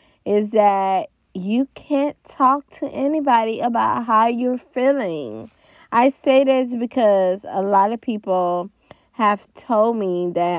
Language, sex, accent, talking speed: English, female, American, 130 wpm